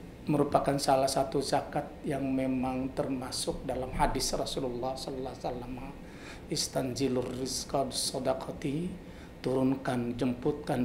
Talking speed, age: 90 wpm, 50-69